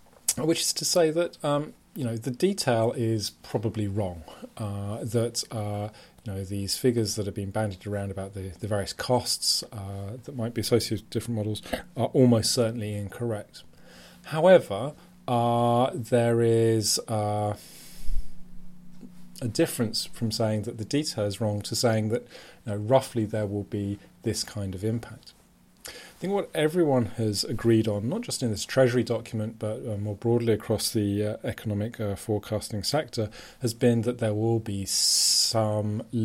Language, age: English, 30-49